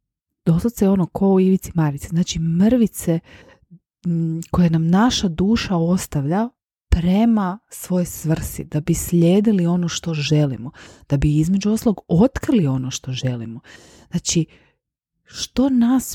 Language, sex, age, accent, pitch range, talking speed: Croatian, female, 30-49, native, 150-205 Hz, 125 wpm